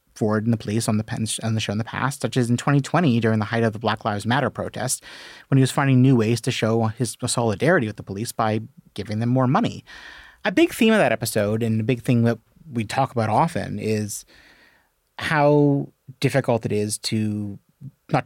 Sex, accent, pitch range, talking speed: male, American, 110-150 Hz, 220 wpm